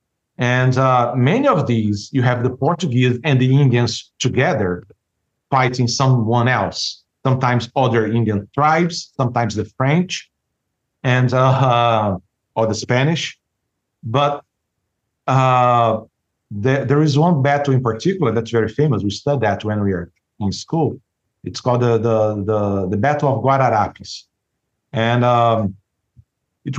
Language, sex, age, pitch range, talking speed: English, male, 50-69, 110-140 Hz, 135 wpm